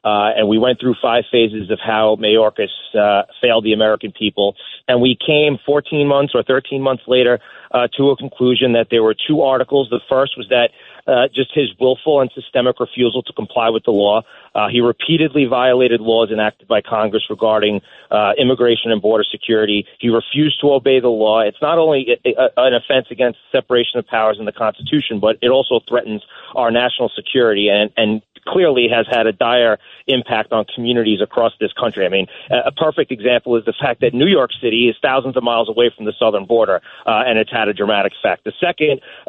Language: English